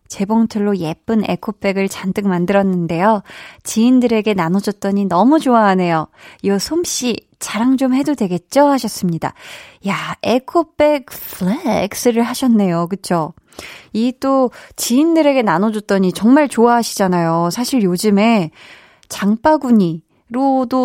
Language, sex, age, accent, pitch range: Korean, female, 20-39, native, 185-245 Hz